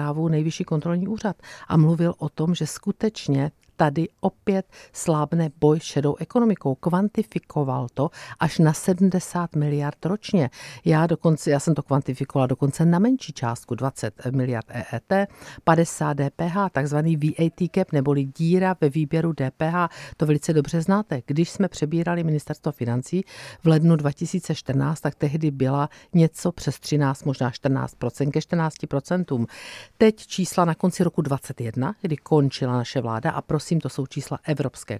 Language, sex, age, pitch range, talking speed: Czech, female, 50-69, 140-180 Hz, 145 wpm